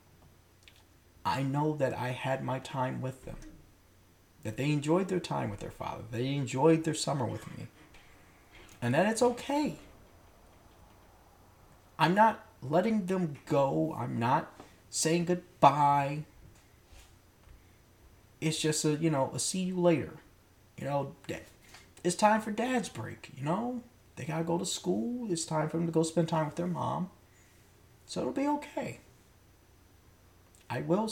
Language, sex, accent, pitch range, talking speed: English, male, American, 95-155 Hz, 145 wpm